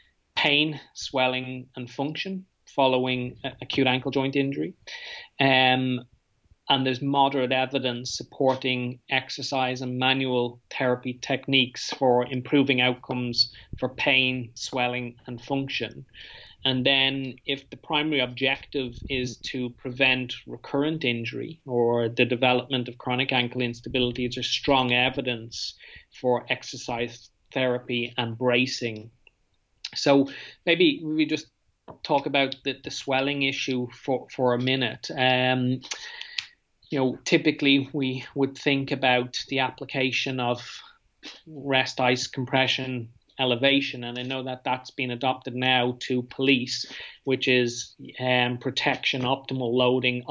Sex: male